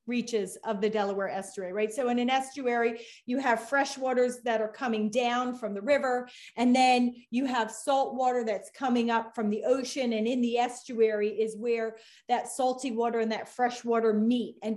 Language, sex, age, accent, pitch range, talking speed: English, female, 40-59, American, 215-250 Hz, 195 wpm